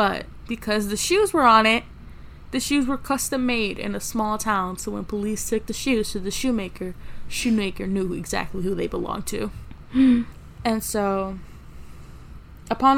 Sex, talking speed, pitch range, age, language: female, 160 wpm, 200-250 Hz, 10-29, English